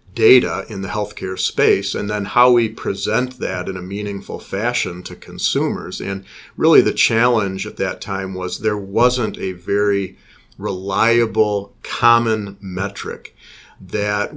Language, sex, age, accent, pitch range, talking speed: English, male, 50-69, American, 100-115 Hz, 140 wpm